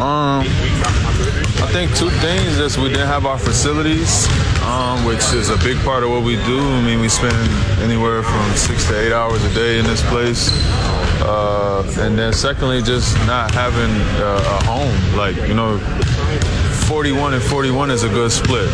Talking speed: 175 wpm